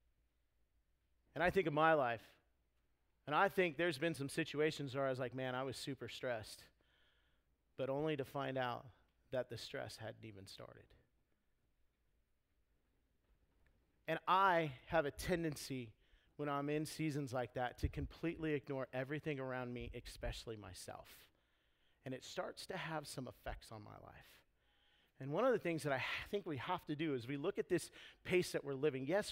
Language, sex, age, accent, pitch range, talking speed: English, male, 40-59, American, 115-160 Hz, 170 wpm